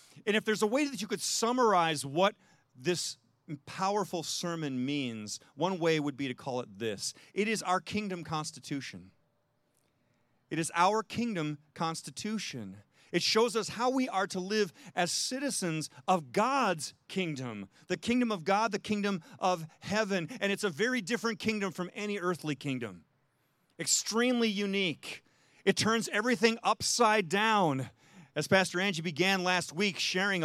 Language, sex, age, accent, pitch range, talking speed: English, male, 40-59, American, 150-210 Hz, 150 wpm